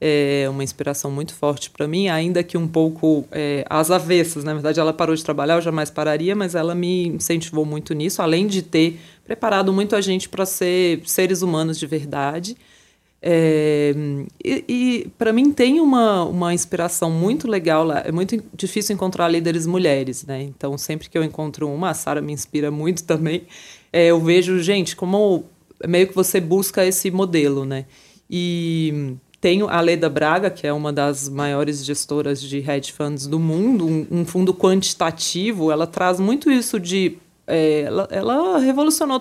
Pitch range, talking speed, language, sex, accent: 155-190 Hz, 175 wpm, Portuguese, female, Brazilian